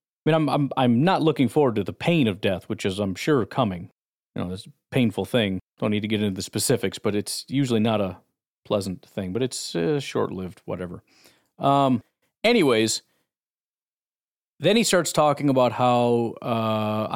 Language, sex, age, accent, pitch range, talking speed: English, male, 40-59, American, 105-135 Hz, 180 wpm